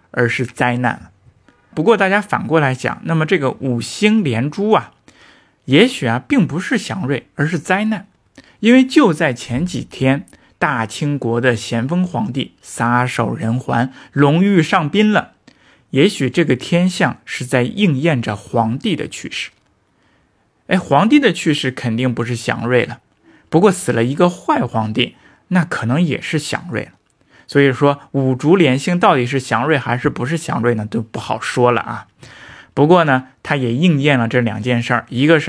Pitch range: 120-170 Hz